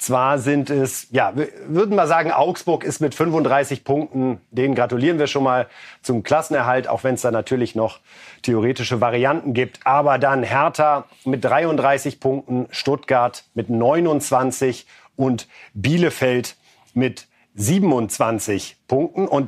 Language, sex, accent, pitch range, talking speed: German, male, German, 130-180 Hz, 135 wpm